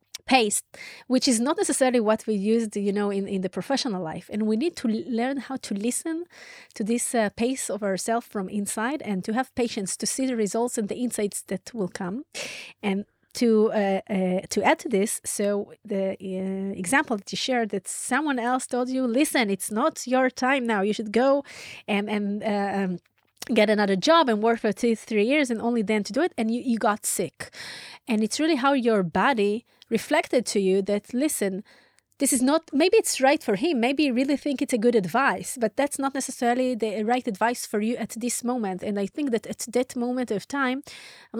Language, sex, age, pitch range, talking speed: Hebrew, female, 30-49, 210-265 Hz, 210 wpm